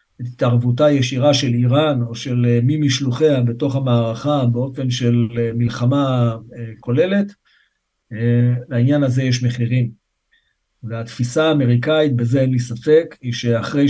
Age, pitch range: 50-69, 120-140 Hz